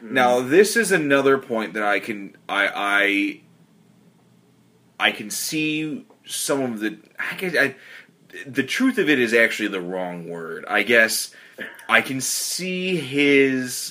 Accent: American